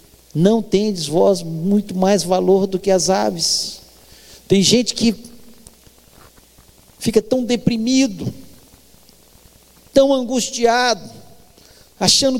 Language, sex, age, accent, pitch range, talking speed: Portuguese, male, 50-69, Brazilian, 190-250 Hz, 90 wpm